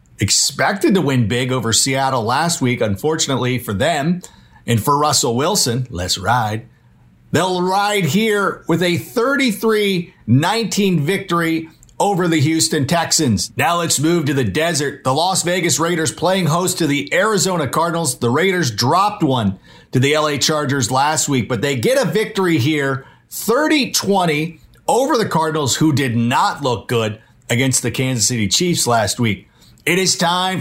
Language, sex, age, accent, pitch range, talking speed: English, male, 50-69, American, 125-175 Hz, 155 wpm